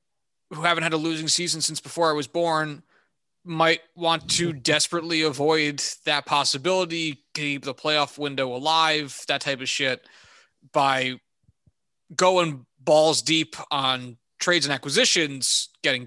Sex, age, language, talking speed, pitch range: male, 20-39, English, 135 wpm, 125-155 Hz